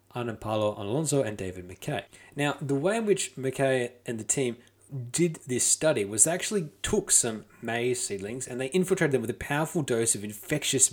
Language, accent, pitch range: English, Australian, 115-155 Hz